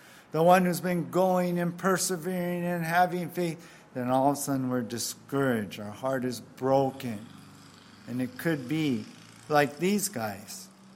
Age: 50-69